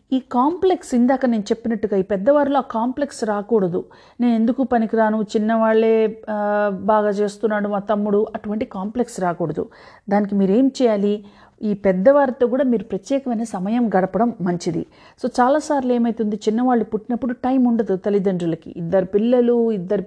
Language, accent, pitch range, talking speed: Telugu, native, 205-245 Hz, 130 wpm